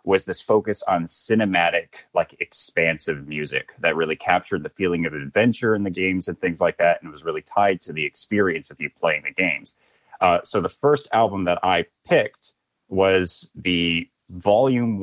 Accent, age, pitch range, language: American, 30-49, 85-110 Hz, English